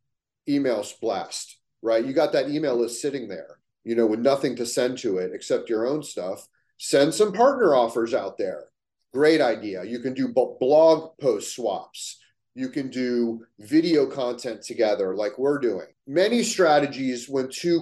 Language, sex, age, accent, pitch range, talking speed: English, male, 30-49, American, 115-160 Hz, 165 wpm